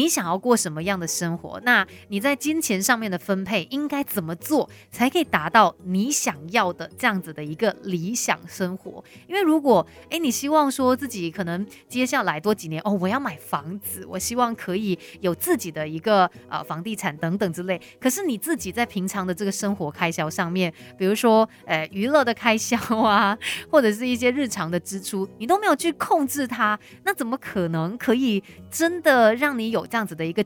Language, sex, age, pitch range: Chinese, female, 30-49, 180-250 Hz